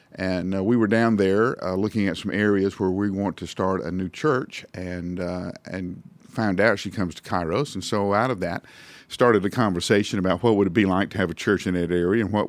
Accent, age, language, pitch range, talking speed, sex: American, 50-69, English, 95-120 Hz, 240 wpm, male